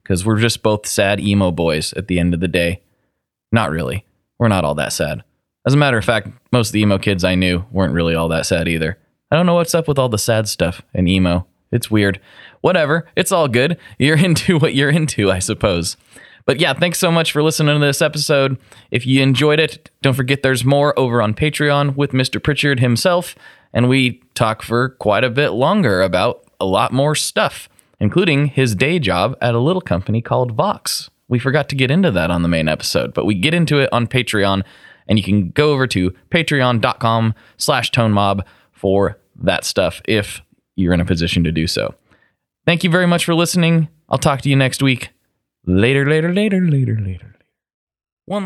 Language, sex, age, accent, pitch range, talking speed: English, male, 20-39, American, 100-145 Hz, 205 wpm